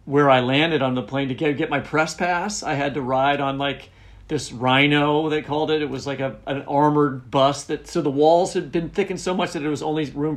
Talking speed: 255 wpm